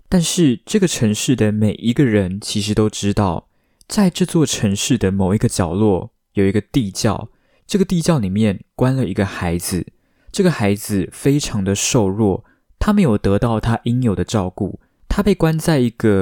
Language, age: Chinese, 20-39